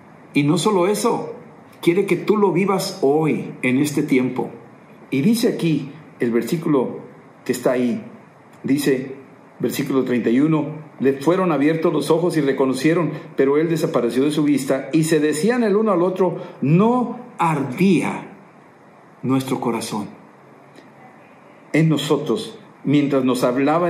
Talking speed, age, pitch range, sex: 135 wpm, 50-69, 130-175 Hz, male